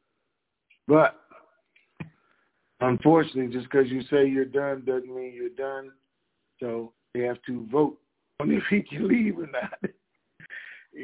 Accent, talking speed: American, 135 wpm